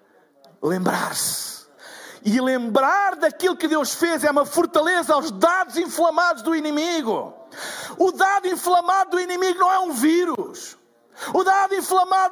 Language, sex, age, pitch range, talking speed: Portuguese, male, 50-69, 320-385 Hz, 130 wpm